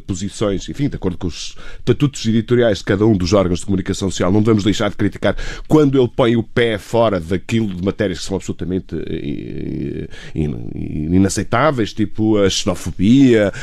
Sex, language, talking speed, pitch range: male, Portuguese, 165 wpm, 105-150 Hz